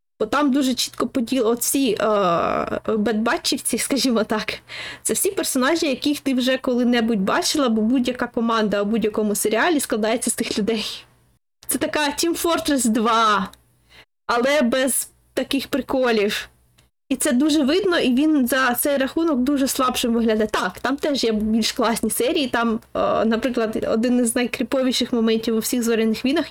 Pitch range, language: 230-280 Hz, Ukrainian